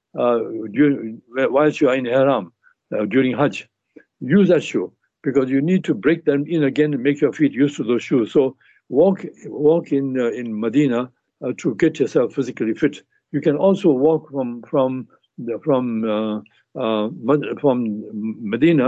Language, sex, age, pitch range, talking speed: English, male, 60-79, 125-155 Hz, 170 wpm